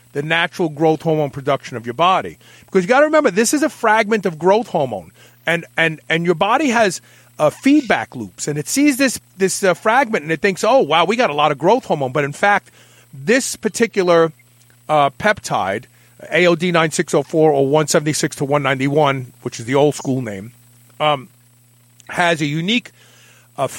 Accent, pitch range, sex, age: American, 135-205 Hz, male, 40-59